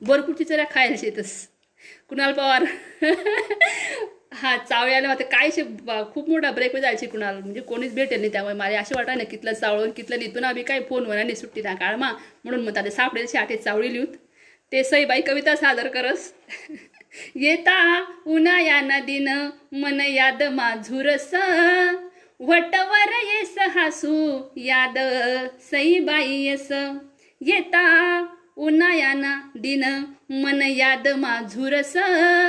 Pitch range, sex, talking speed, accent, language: 265-345 Hz, female, 120 wpm, native, Marathi